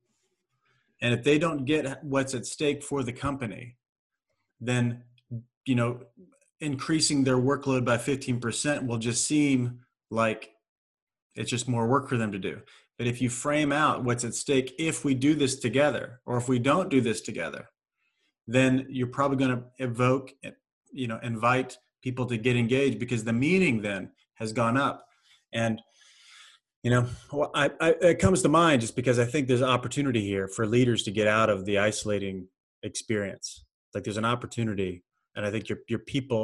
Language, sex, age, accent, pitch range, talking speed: English, male, 30-49, American, 115-135 Hz, 180 wpm